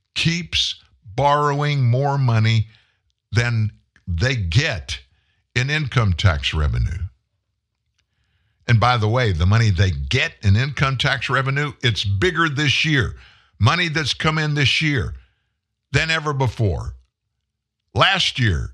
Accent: American